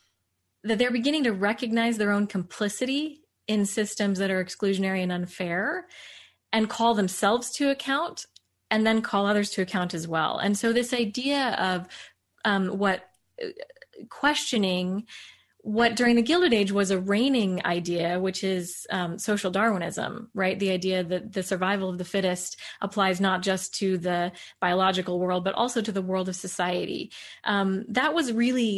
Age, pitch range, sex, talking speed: 20-39, 185-225 Hz, female, 160 wpm